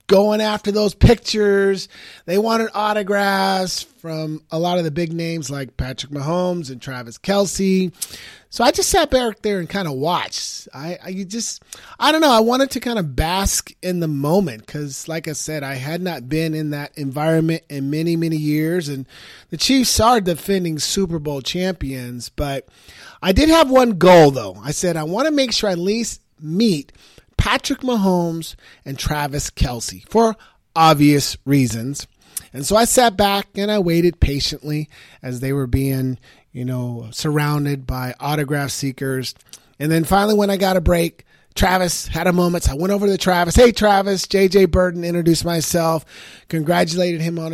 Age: 30-49